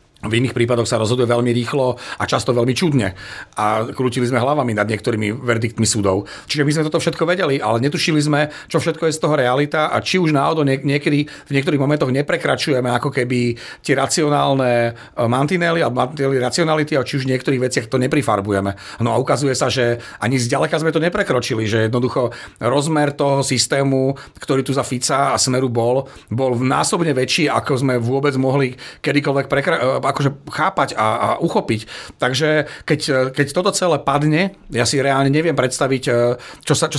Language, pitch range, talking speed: Slovak, 120-145 Hz, 175 wpm